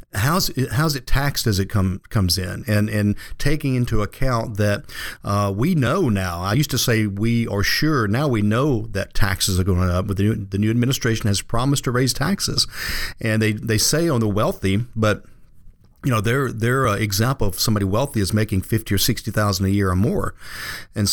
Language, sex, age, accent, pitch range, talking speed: English, male, 50-69, American, 100-125 Hz, 200 wpm